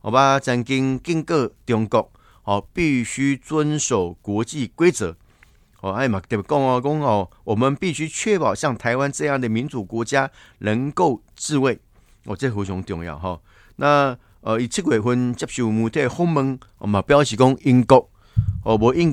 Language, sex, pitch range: Chinese, male, 100-135 Hz